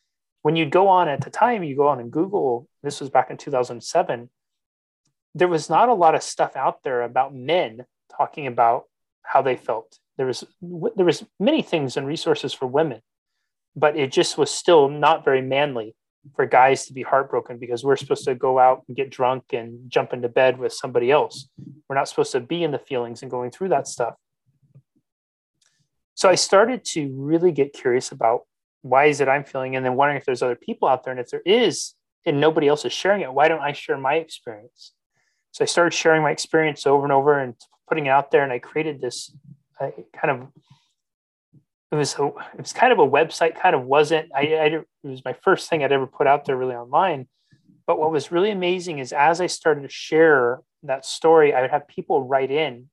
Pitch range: 130-160 Hz